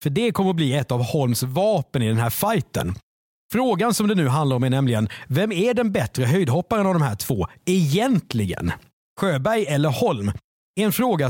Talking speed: 190 wpm